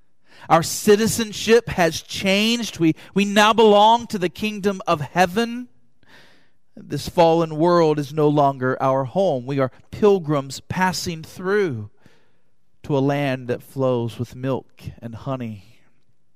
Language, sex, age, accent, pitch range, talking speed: English, male, 40-59, American, 130-200 Hz, 130 wpm